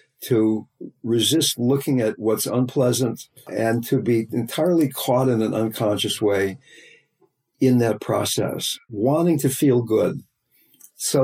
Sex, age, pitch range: male, 60-79, 110-135 Hz